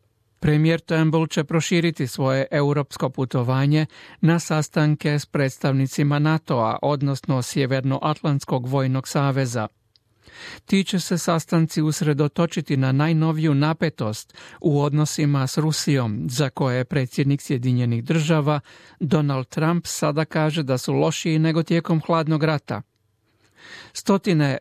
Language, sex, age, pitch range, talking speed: Croatian, male, 40-59, 135-160 Hz, 105 wpm